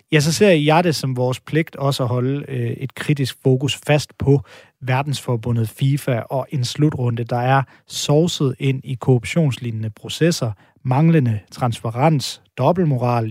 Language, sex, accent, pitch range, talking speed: Danish, male, native, 125-150 Hz, 145 wpm